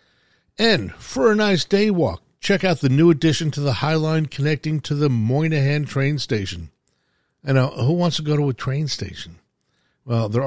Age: 50-69